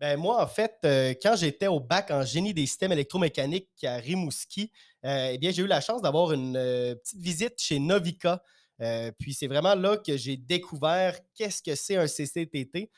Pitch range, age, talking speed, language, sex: 140-180 Hz, 30-49, 200 wpm, French, male